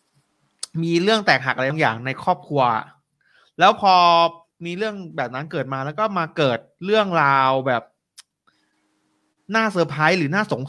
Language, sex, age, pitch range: Thai, male, 20-39, 140-180 Hz